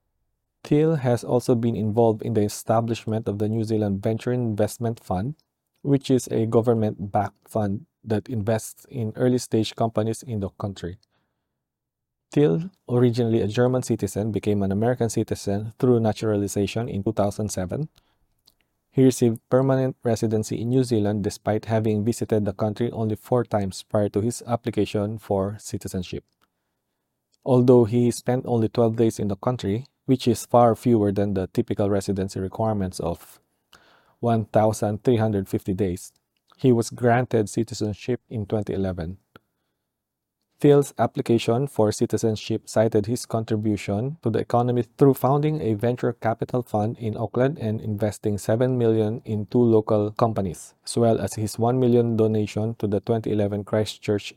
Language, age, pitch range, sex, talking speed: English, 20-39, 105-120 Hz, male, 140 wpm